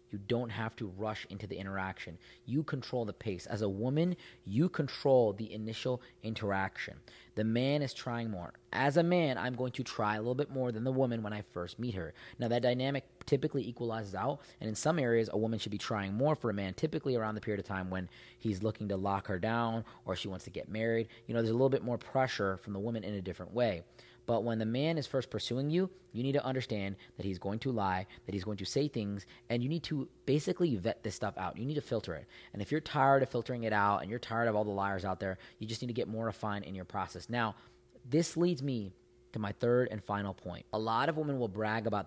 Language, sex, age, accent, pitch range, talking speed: English, male, 30-49, American, 100-125 Hz, 255 wpm